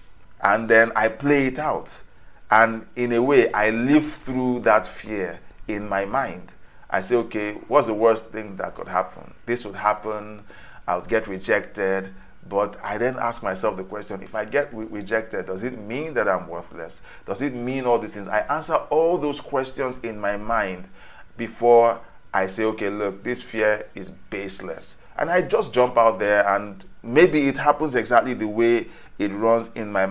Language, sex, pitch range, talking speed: English, male, 100-125 Hz, 185 wpm